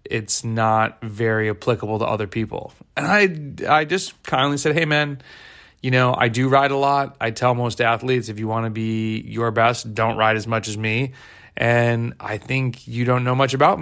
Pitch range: 110-130 Hz